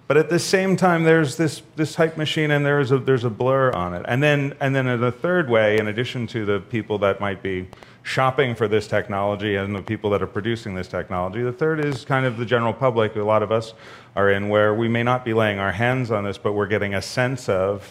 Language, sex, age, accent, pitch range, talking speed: English, male, 40-59, American, 105-130 Hz, 260 wpm